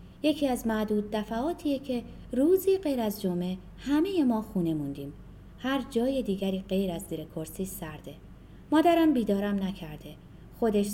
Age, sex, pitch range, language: 30-49, female, 185-280 Hz, Persian